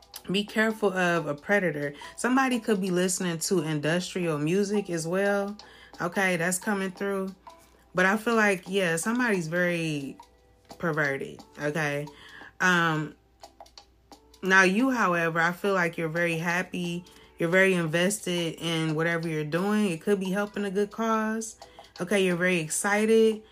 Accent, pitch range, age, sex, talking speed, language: American, 165-200 Hz, 30-49, female, 140 wpm, English